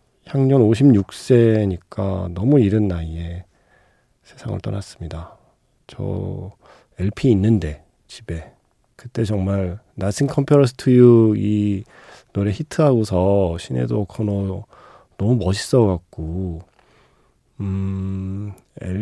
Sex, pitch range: male, 95-125 Hz